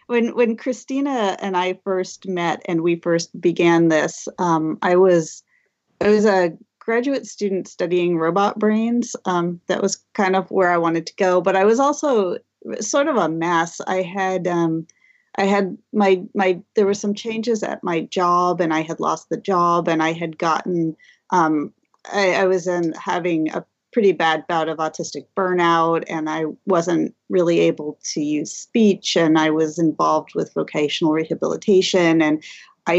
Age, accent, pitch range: 30-49, American, 165-200 Hz